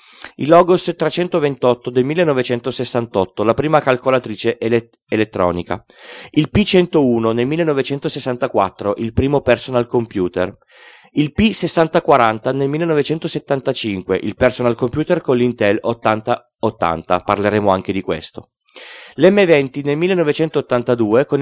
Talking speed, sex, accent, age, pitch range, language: 100 wpm, male, native, 30-49, 115-150 Hz, Italian